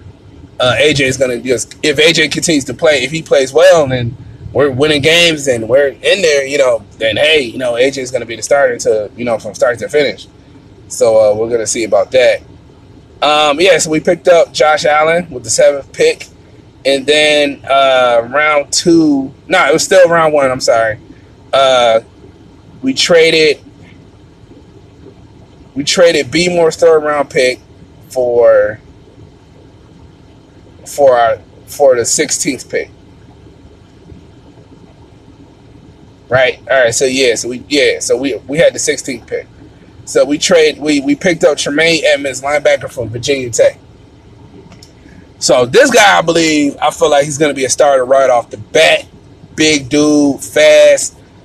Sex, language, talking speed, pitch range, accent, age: male, English, 165 wpm, 130-180 Hz, American, 20-39